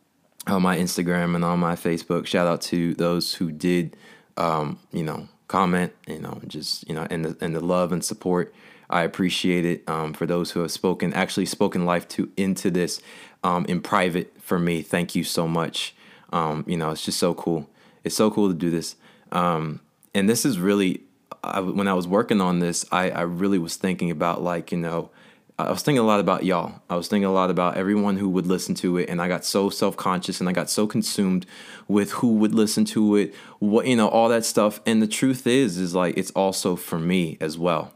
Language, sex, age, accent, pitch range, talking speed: English, male, 20-39, American, 85-105 Hz, 220 wpm